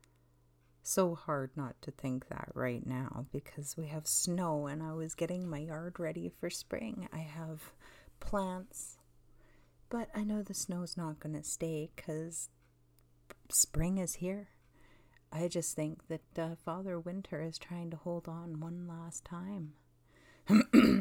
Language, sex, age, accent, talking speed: English, female, 40-59, American, 150 wpm